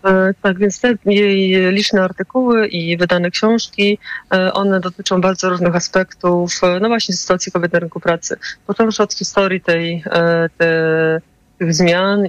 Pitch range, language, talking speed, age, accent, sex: 165-190 Hz, Polish, 135 wpm, 30-49, native, female